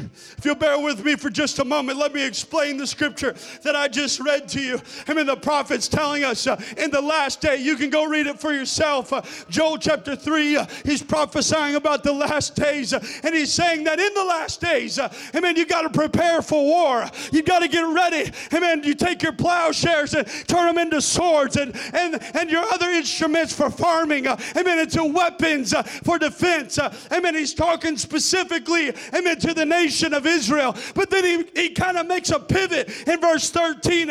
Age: 40-59